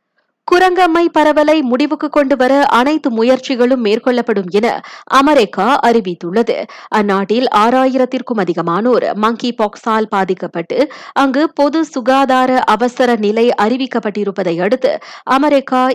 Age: 30-49